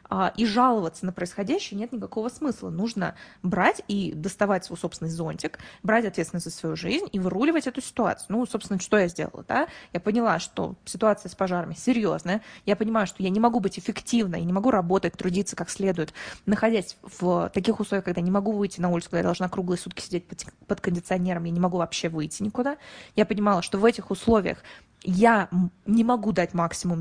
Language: Russian